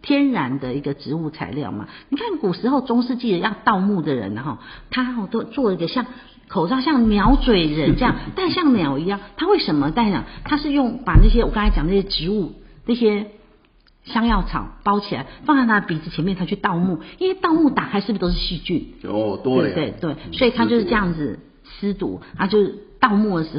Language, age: Chinese, 50-69